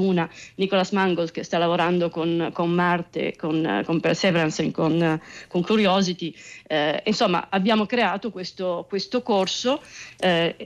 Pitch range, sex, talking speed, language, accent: 170-205 Hz, female, 130 wpm, Italian, native